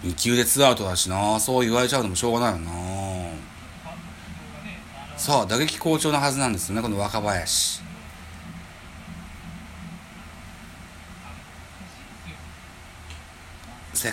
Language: Japanese